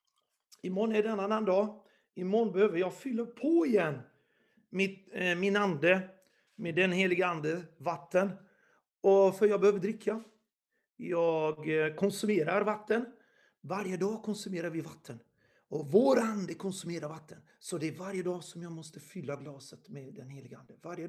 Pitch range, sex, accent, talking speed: 180-215 Hz, male, native, 150 wpm